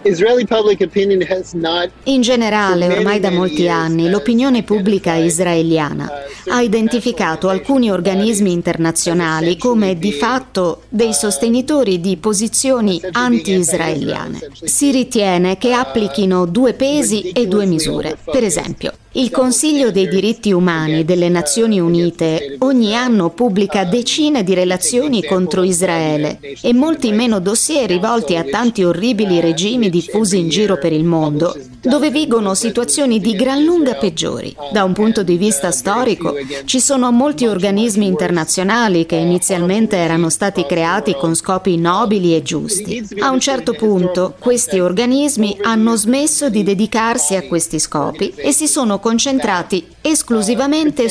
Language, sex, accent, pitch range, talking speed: Italian, female, native, 175-240 Hz, 130 wpm